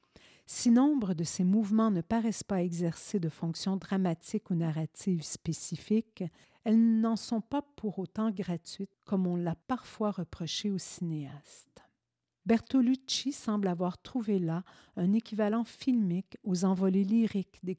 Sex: female